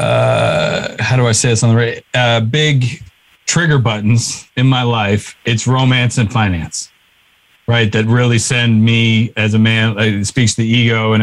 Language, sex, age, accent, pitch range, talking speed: English, male, 40-59, American, 110-125 Hz, 185 wpm